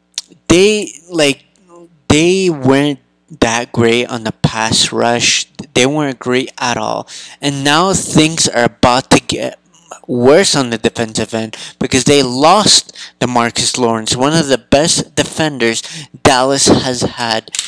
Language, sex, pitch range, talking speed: English, male, 115-150 Hz, 140 wpm